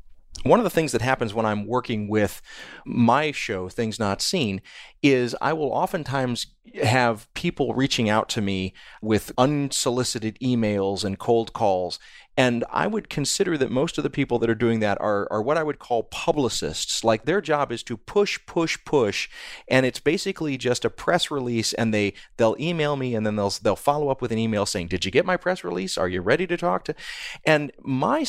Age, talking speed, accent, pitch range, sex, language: 30-49, 205 wpm, American, 105-140 Hz, male, English